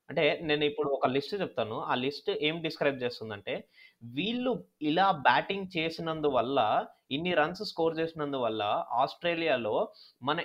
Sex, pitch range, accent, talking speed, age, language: male, 135-160 Hz, native, 140 wpm, 20-39, Telugu